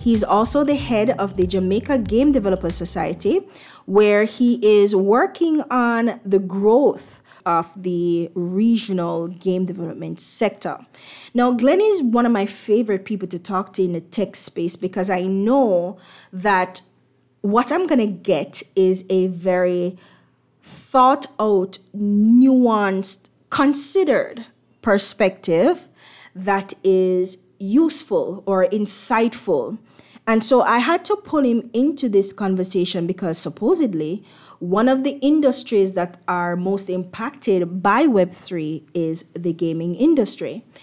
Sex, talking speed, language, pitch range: female, 125 wpm, English, 185-240 Hz